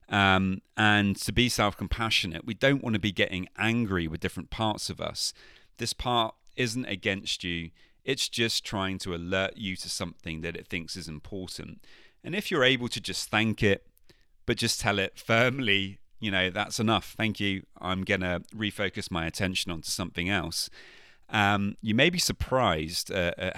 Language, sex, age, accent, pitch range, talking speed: English, male, 30-49, British, 90-110 Hz, 175 wpm